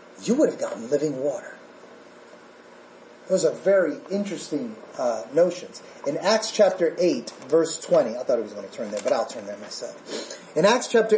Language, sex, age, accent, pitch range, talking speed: English, male, 30-49, American, 205-305 Hz, 180 wpm